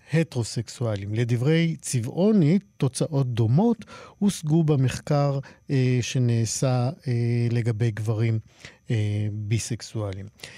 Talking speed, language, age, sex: 80 wpm, Hebrew, 50-69, male